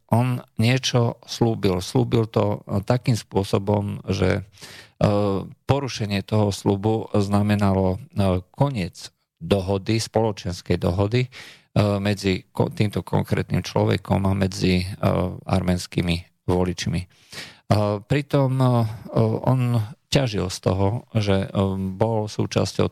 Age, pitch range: 40-59, 95-115 Hz